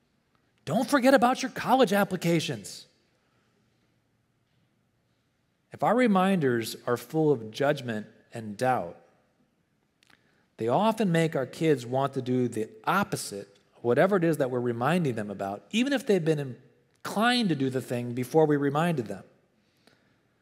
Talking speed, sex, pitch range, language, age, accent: 135 wpm, male, 115-165 Hz, English, 40-59, American